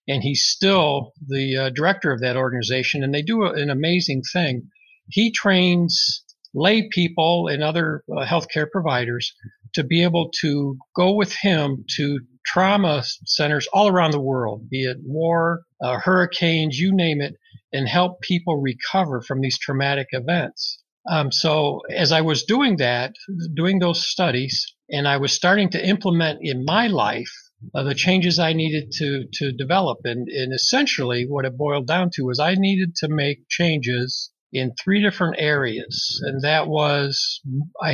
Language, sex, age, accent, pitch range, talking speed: English, male, 50-69, American, 135-175 Hz, 165 wpm